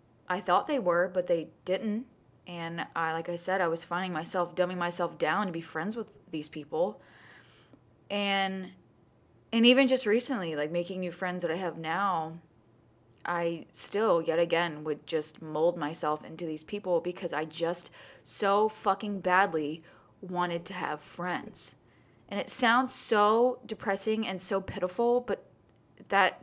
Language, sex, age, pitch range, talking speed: English, female, 20-39, 165-200 Hz, 155 wpm